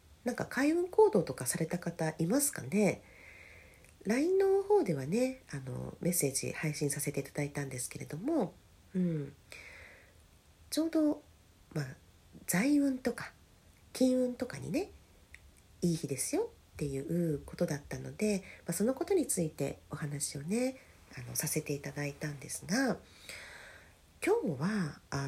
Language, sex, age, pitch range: Japanese, female, 40-59, 135-225 Hz